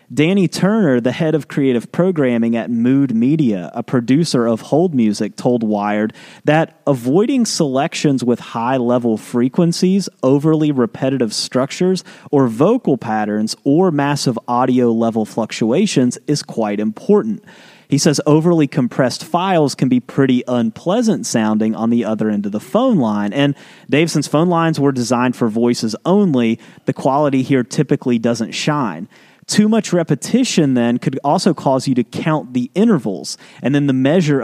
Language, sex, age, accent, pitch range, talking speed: English, male, 30-49, American, 120-170 Hz, 150 wpm